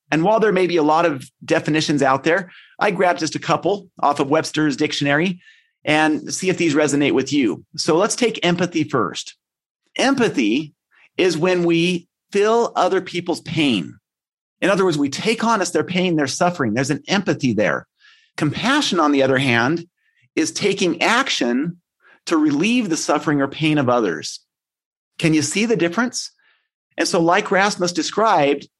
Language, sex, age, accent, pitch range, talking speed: English, male, 40-59, American, 155-225 Hz, 170 wpm